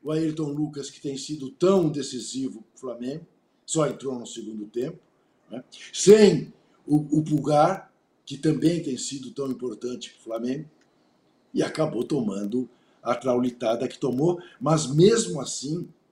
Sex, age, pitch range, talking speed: male, 60-79, 135-170 Hz, 150 wpm